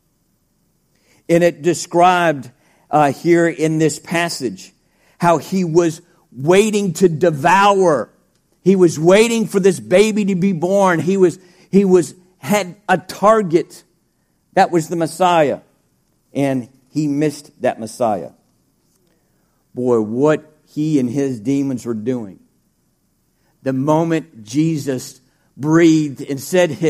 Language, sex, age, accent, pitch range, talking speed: English, male, 50-69, American, 155-185 Hz, 120 wpm